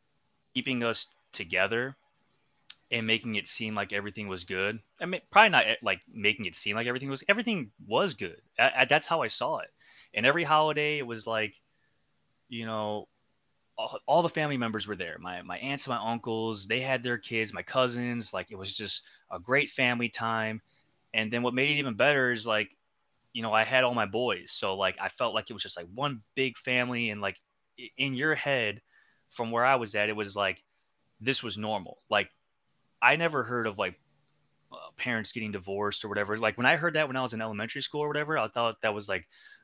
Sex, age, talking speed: male, 20-39, 210 wpm